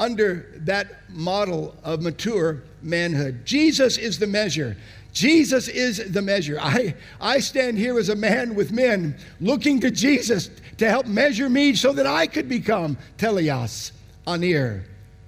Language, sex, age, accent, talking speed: English, male, 50-69, American, 145 wpm